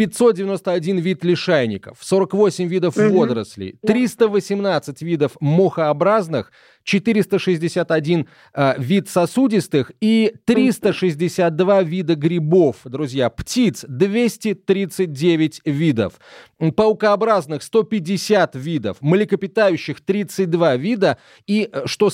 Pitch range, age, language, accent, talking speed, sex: 145-195 Hz, 30-49, Russian, native, 80 wpm, male